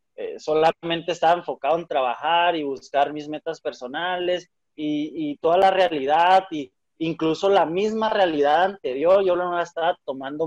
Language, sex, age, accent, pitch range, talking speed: Spanish, male, 30-49, Mexican, 155-190 Hz, 155 wpm